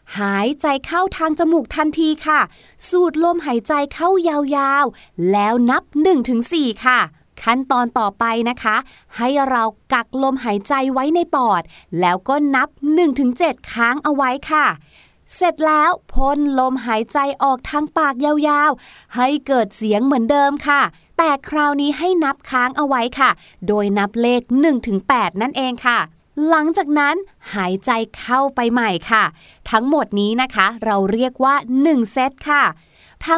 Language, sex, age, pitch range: Thai, female, 20-39, 235-295 Hz